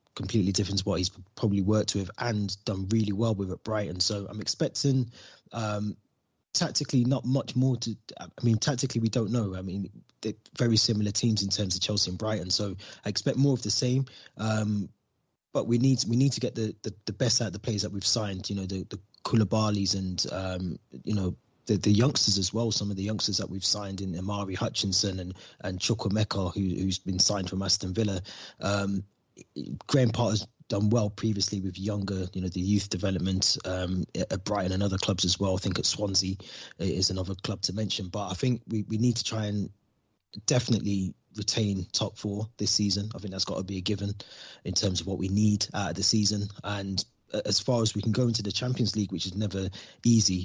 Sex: male